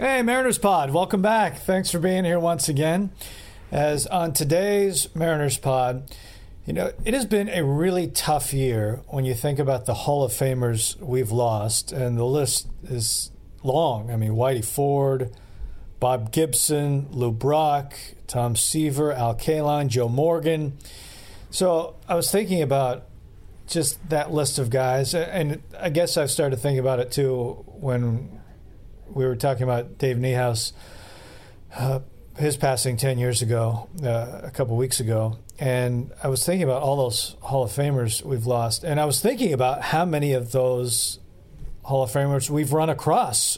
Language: English